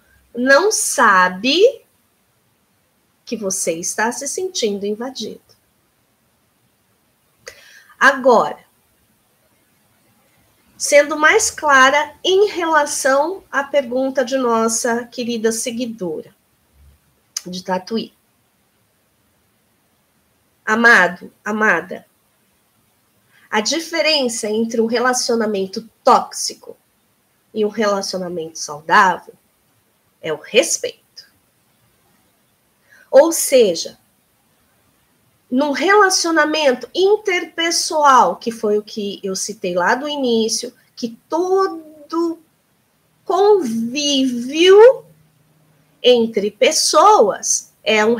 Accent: Brazilian